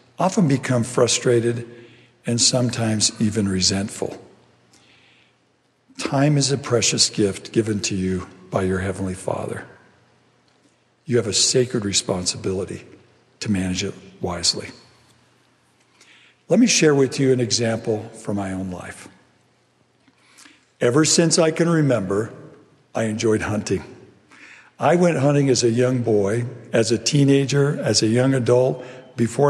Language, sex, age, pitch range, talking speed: English, male, 60-79, 105-135 Hz, 125 wpm